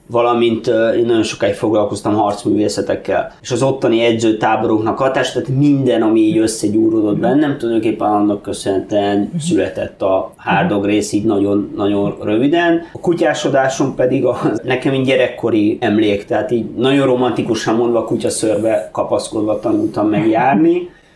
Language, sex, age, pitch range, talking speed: Hungarian, male, 30-49, 105-160 Hz, 130 wpm